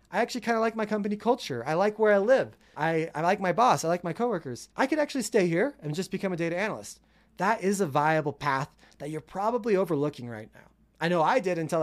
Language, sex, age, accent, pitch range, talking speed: English, male, 30-49, American, 140-200 Hz, 250 wpm